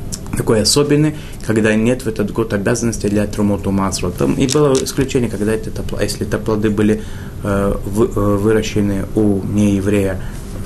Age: 20-39